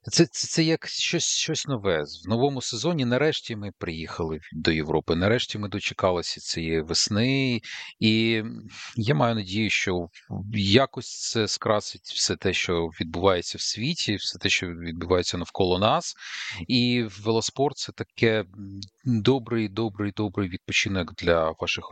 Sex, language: male, Russian